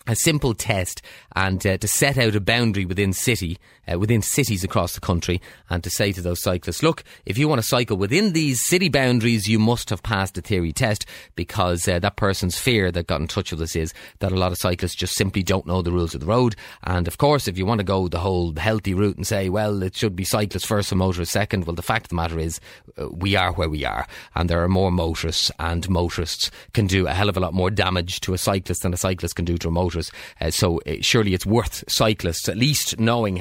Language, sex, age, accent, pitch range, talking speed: English, male, 30-49, Irish, 90-110 Hz, 250 wpm